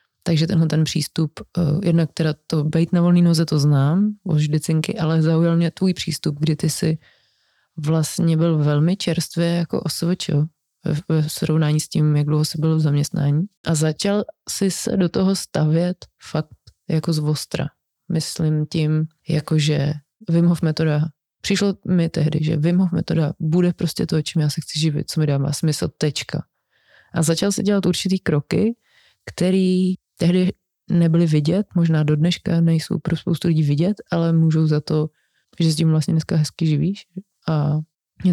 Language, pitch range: Czech, 155-175 Hz